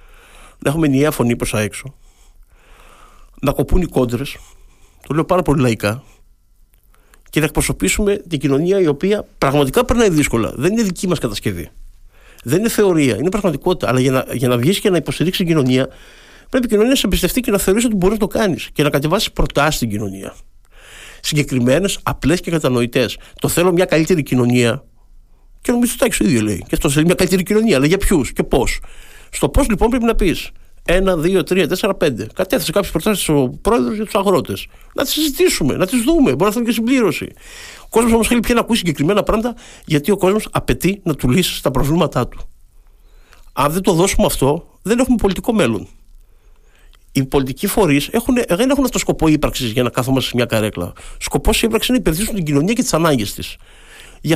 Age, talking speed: 50-69, 190 wpm